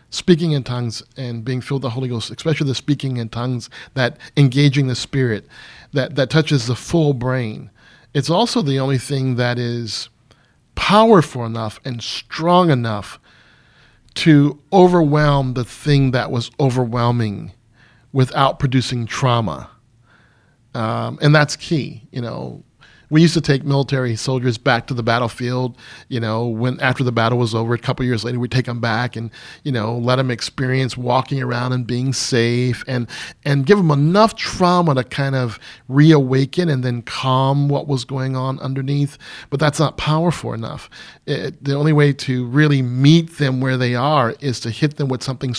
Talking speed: 170 wpm